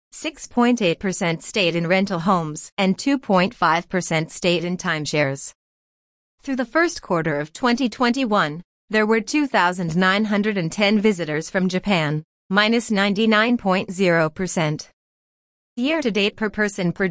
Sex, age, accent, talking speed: female, 30-49, American, 95 wpm